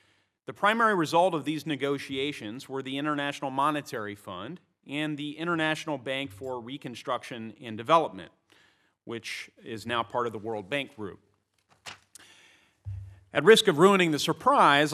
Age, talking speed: 40-59, 135 wpm